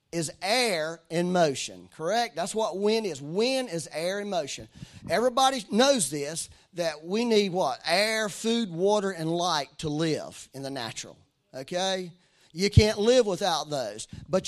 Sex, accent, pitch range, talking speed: male, American, 170-225 Hz, 160 wpm